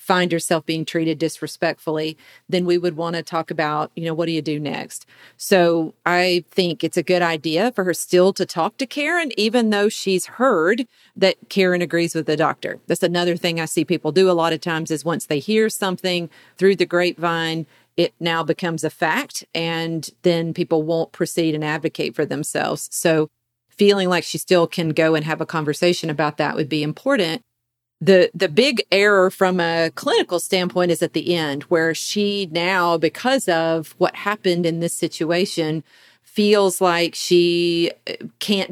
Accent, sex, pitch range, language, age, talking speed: American, female, 165-190 Hz, English, 40-59, 185 wpm